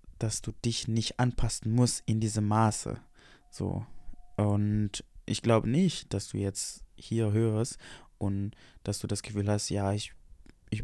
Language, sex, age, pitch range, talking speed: German, male, 20-39, 100-125 Hz, 155 wpm